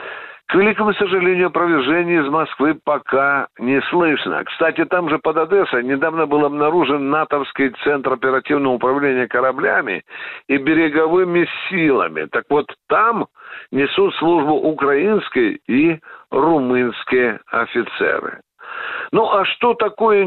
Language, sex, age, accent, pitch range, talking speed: Russian, male, 60-79, native, 130-205 Hz, 110 wpm